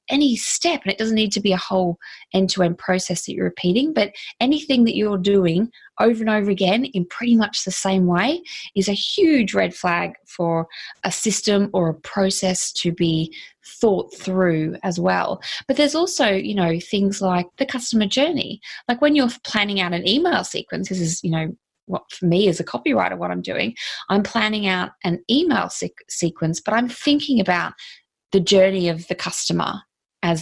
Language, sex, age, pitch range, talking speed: English, female, 20-39, 175-225 Hz, 185 wpm